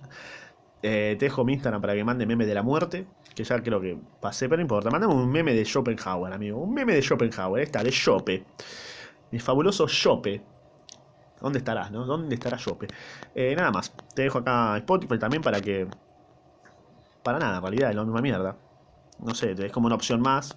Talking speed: 195 wpm